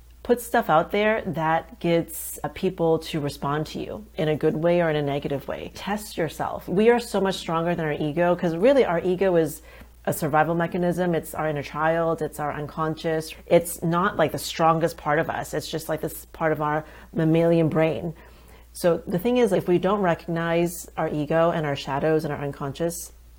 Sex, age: female, 40-59